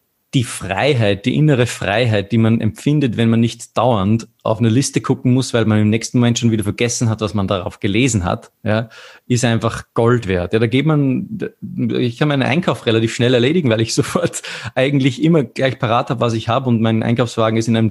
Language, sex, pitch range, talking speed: German, male, 110-125 Hz, 215 wpm